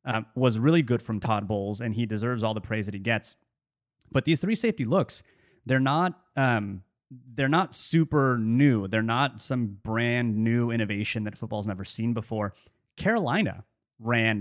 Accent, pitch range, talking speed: American, 110-135 Hz, 165 wpm